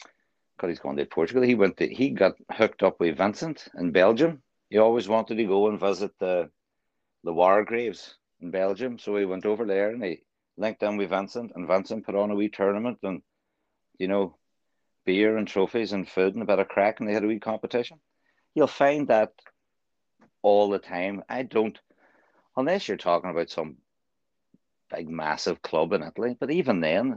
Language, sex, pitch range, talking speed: English, male, 90-115 Hz, 190 wpm